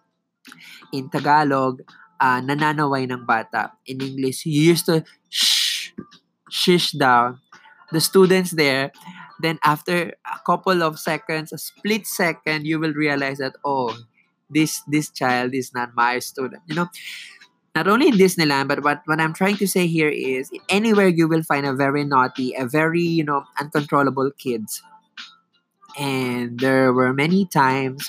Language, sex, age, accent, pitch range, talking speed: English, male, 20-39, Filipino, 135-175 Hz, 150 wpm